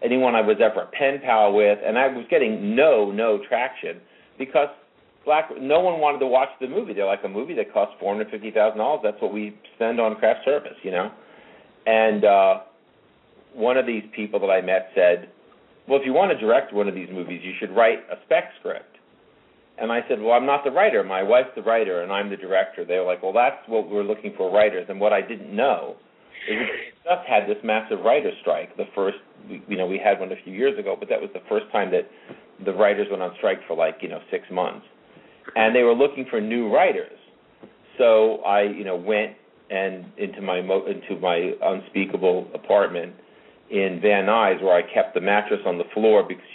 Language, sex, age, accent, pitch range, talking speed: English, male, 50-69, American, 100-130 Hz, 210 wpm